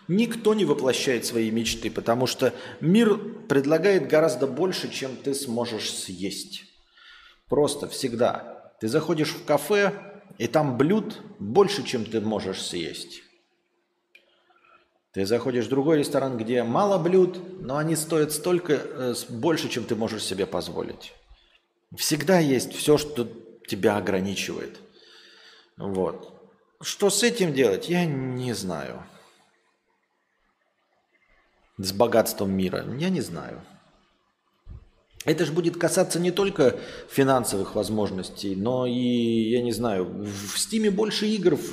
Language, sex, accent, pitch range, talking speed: Russian, male, native, 115-180 Hz, 120 wpm